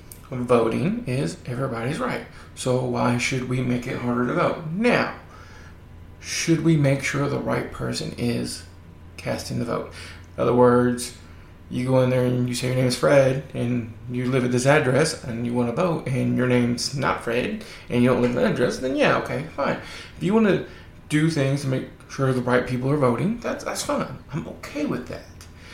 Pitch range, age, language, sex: 120-165 Hz, 20-39, English, male